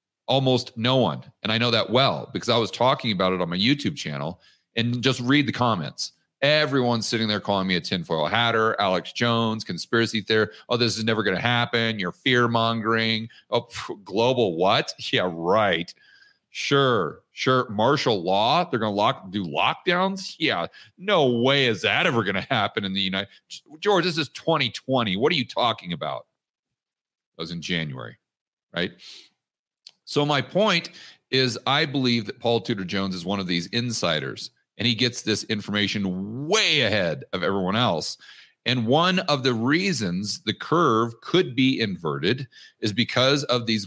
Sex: male